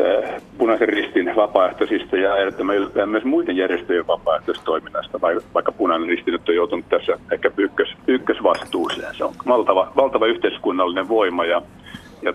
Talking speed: 120 wpm